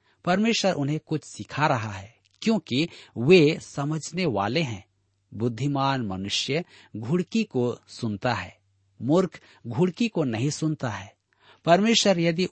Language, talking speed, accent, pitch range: Hindi, 120 wpm, native, 105-155 Hz